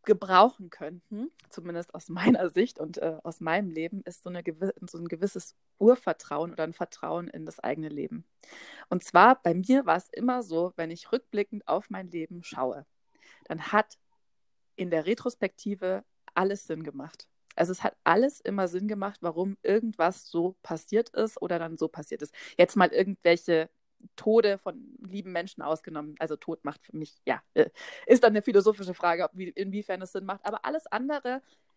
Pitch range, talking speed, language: 175-235 Hz, 175 wpm, German